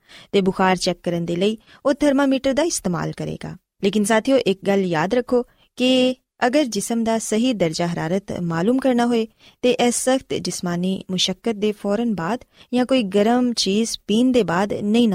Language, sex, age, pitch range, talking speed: Punjabi, female, 20-39, 185-250 Hz, 170 wpm